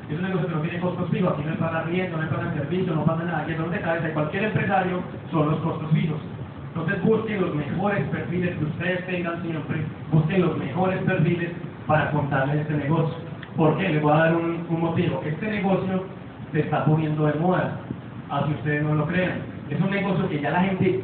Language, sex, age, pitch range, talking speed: Spanish, male, 40-59, 155-180 Hz, 220 wpm